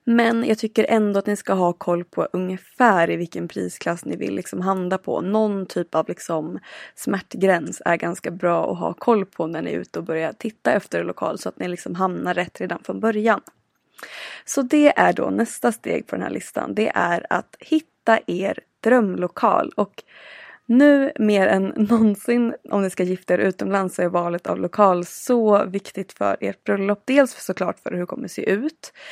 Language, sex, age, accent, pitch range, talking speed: Swedish, female, 20-39, native, 180-230 Hz, 195 wpm